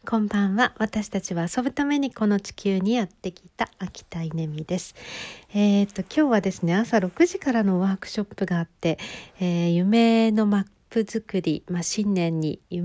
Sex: female